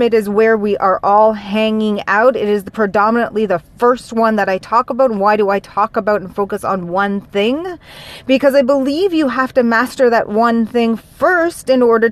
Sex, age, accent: female, 30-49, American